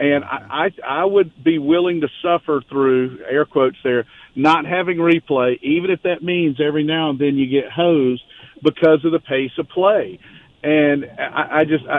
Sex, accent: male, American